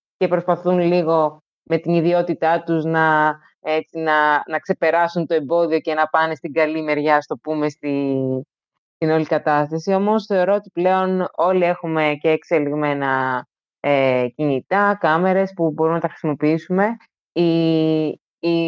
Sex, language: female, Greek